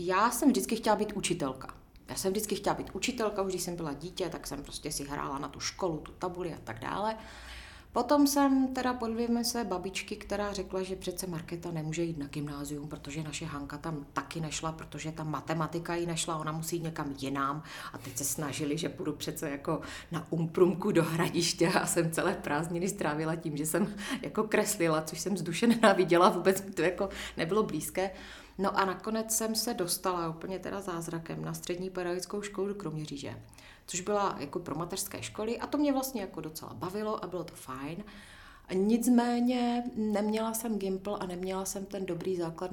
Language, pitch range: Czech, 150-190 Hz